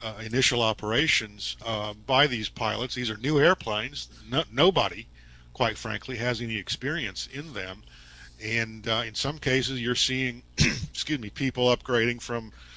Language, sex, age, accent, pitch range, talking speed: English, male, 50-69, American, 110-130 Hz, 145 wpm